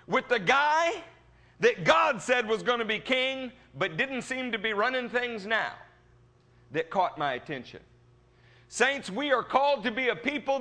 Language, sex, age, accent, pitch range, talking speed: English, male, 50-69, American, 205-295 Hz, 175 wpm